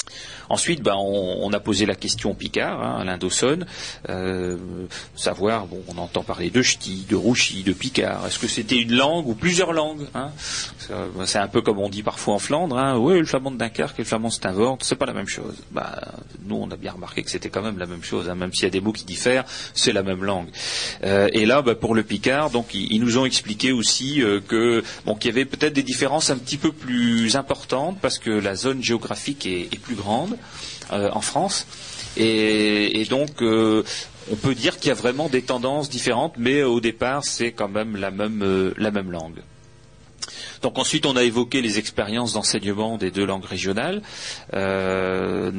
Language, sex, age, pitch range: French, male, 30-49, 95-125 Hz